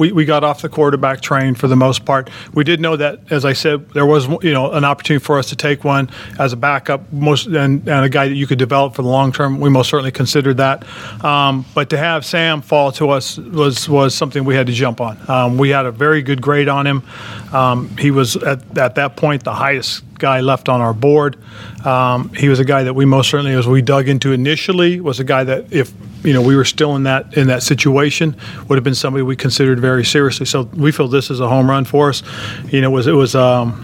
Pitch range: 130-145 Hz